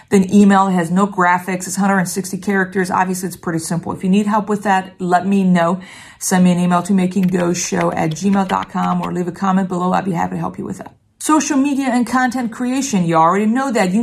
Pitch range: 180-210 Hz